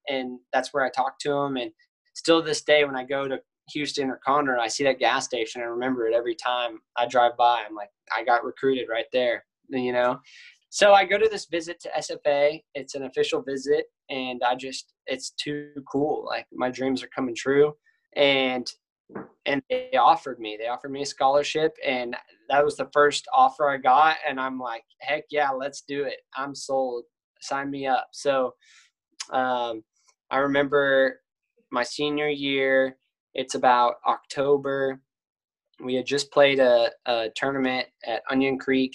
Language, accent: English, American